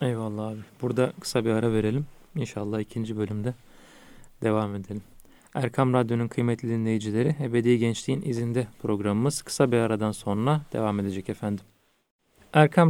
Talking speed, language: 130 wpm, Turkish